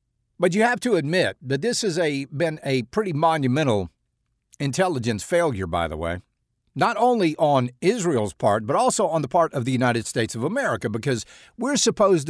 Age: 60-79